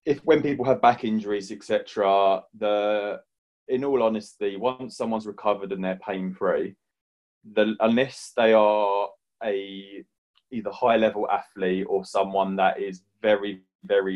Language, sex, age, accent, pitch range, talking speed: English, male, 20-39, British, 95-105 Hz, 140 wpm